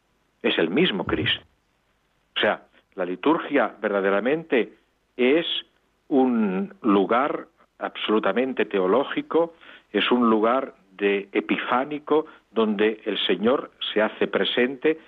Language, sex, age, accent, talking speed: Spanish, male, 50-69, Spanish, 95 wpm